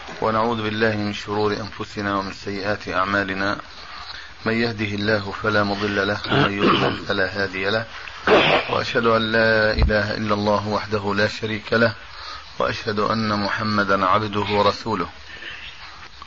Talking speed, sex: 125 wpm, male